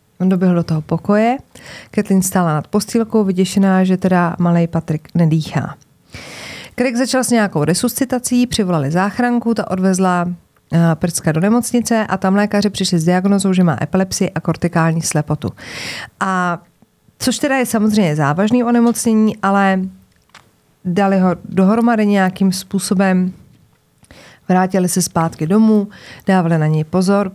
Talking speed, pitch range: 130 wpm, 170-215 Hz